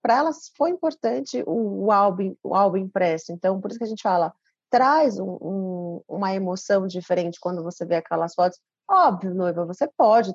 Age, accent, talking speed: 30-49, Brazilian, 160 wpm